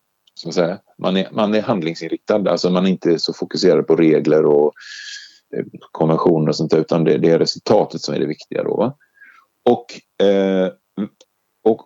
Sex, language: male, Swedish